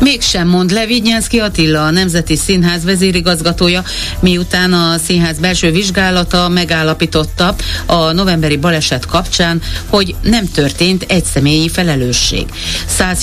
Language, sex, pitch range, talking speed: Hungarian, female, 150-185 Hz, 120 wpm